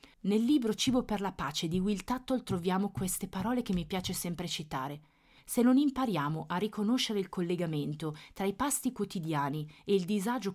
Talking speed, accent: 175 wpm, native